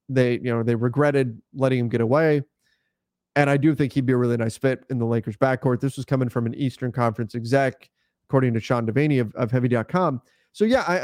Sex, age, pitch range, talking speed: male, 30-49, 120-155 Hz, 225 wpm